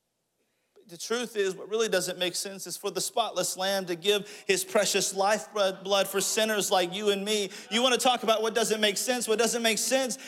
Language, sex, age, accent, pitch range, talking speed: English, male, 40-59, American, 155-225 Hz, 210 wpm